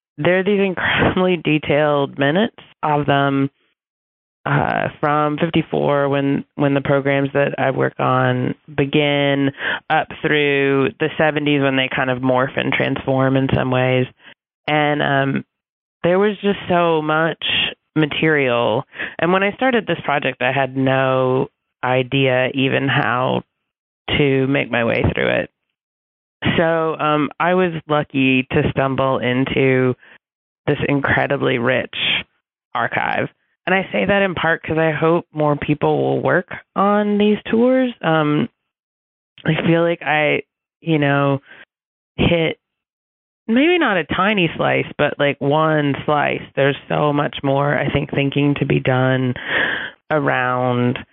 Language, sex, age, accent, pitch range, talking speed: English, female, 20-39, American, 135-160 Hz, 135 wpm